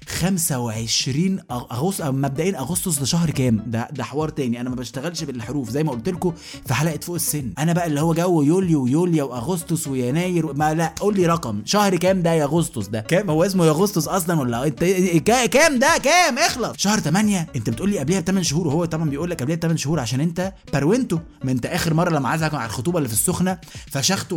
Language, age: Arabic, 20-39